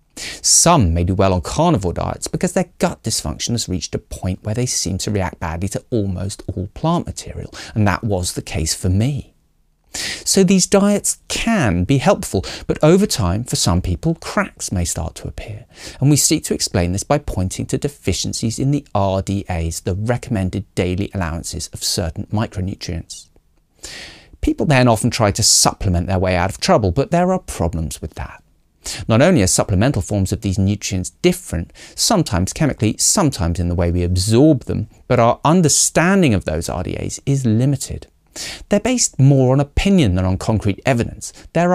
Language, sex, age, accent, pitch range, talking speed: English, male, 40-59, British, 90-140 Hz, 175 wpm